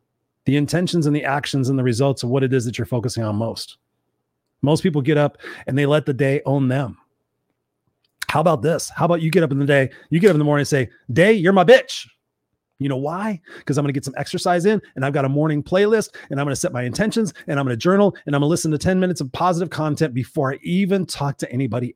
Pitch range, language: 125-165 Hz, English